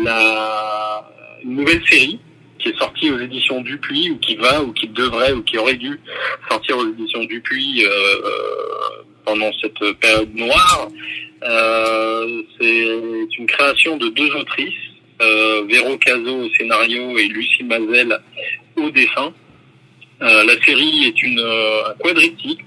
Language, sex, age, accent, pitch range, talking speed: French, male, 40-59, French, 115-160 Hz, 140 wpm